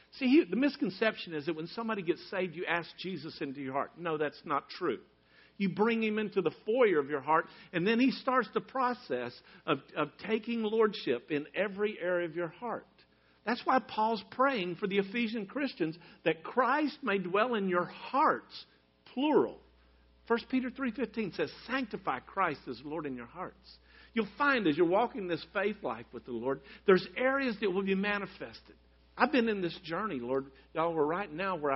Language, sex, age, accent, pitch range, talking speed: English, male, 50-69, American, 150-220 Hz, 185 wpm